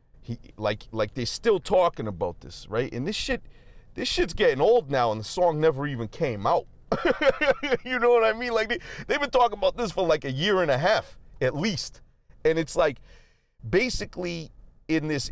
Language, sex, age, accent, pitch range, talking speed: English, male, 40-59, American, 120-160 Hz, 195 wpm